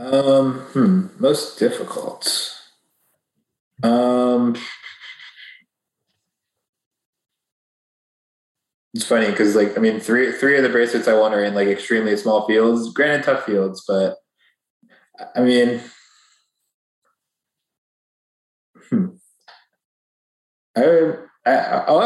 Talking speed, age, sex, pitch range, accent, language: 90 wpm, 20-39, male, 100-130 Hz, American, English